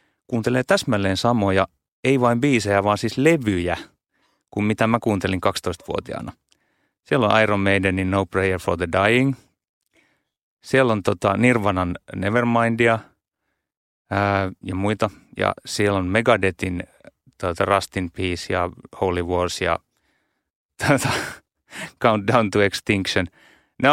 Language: Finnish